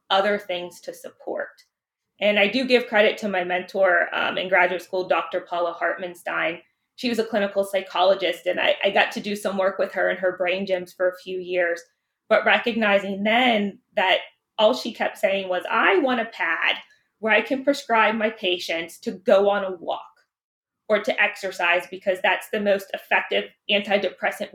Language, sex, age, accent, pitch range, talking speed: English, female, 20-39, American, 185-225 Hz, 185 wpm